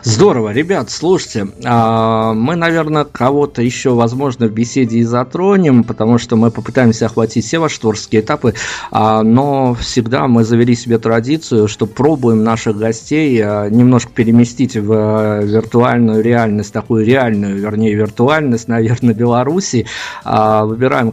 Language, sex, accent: Russian, male, native